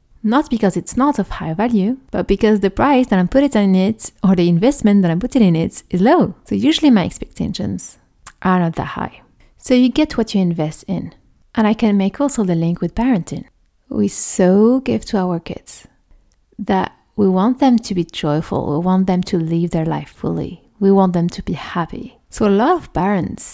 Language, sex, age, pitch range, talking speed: French, female, 30-49, 180-250 Hz, 210 wpm